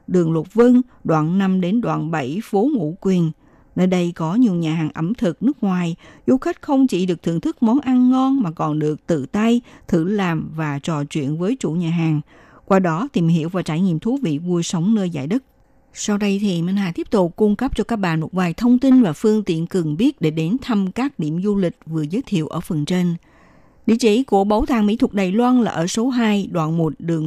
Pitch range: 165-230 Hz